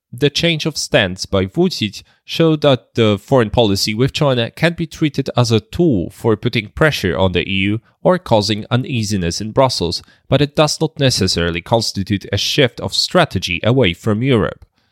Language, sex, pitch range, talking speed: English, male, 95-135 Hz, 175 wpm